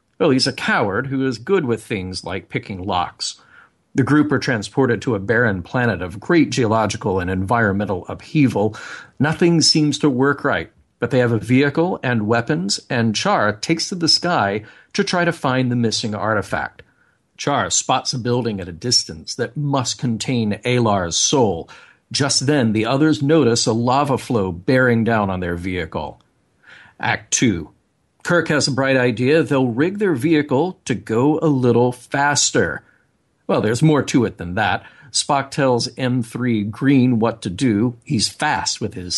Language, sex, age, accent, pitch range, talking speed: English, male, 50-69, American, 110-140 Hz, 170 wpm